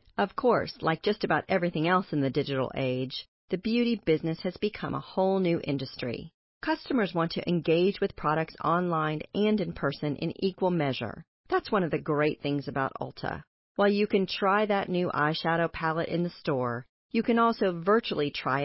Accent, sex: American, female